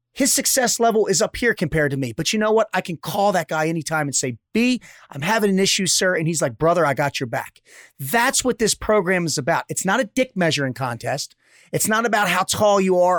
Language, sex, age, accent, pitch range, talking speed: English, male, 30-49, American, 155-210 Hz, 245 wpm